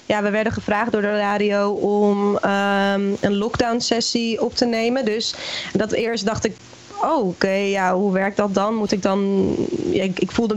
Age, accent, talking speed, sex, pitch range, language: 20-39, Dutch, 200 wpm, female, 195-230 Hz, Dutch